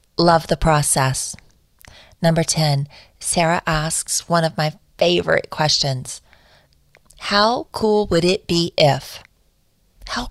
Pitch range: 155-200 Hz